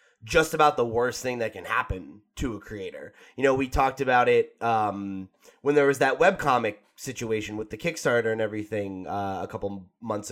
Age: 20-39